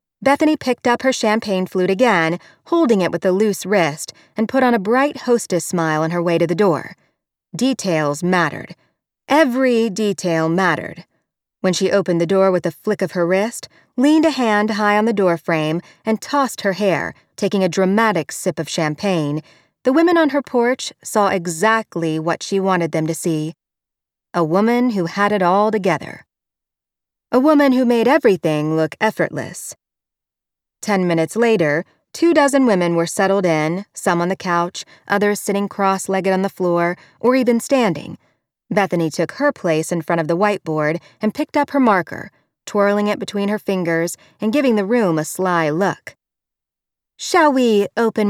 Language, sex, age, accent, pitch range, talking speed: English, female, 40-59, American, 170-230 Hz, 170 wpm